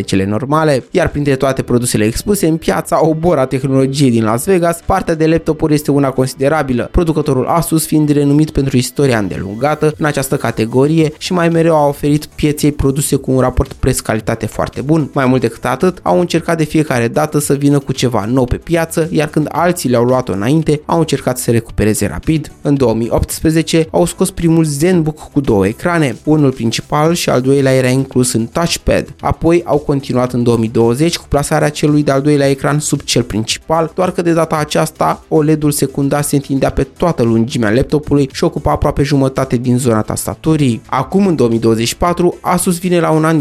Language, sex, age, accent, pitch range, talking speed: Romanian, male, 20-39, native, 125-160 Hz, 185 wpm